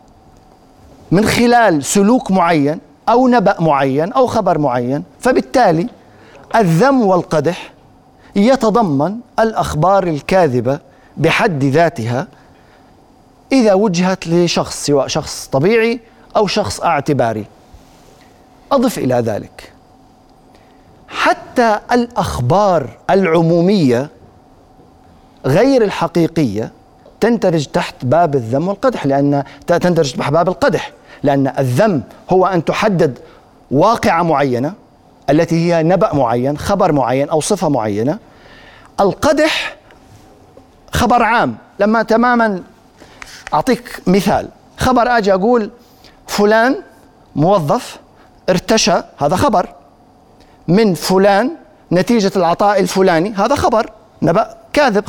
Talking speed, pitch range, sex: 95 wpm, 160-230 Hz, male